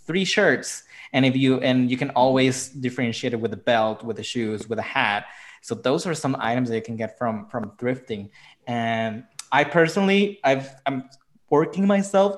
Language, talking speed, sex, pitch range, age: English, 190 wpm, male, 120-160 Hz, 20-39